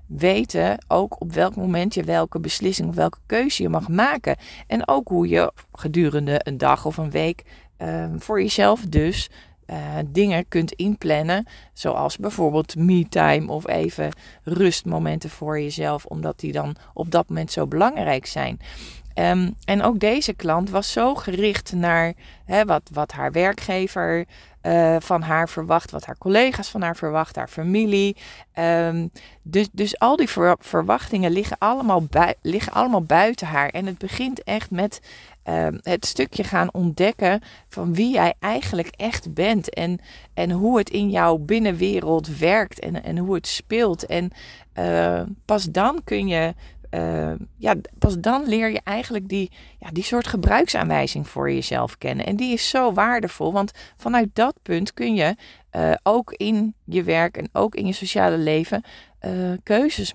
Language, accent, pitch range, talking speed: Dutch, Dutch, 155-205 Hz, 155 wpm